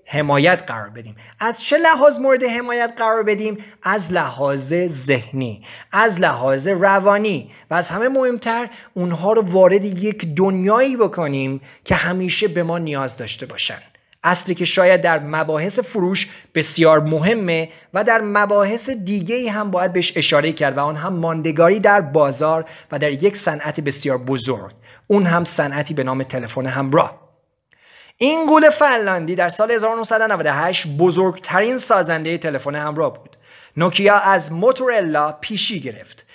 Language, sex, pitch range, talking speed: Persian, male, 145-215 Hz, 140 wpm